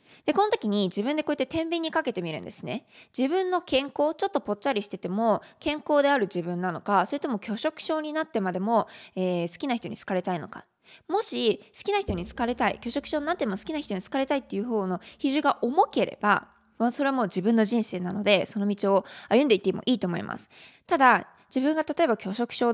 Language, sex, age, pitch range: Japanese, female, 20-39, 195-285 Hz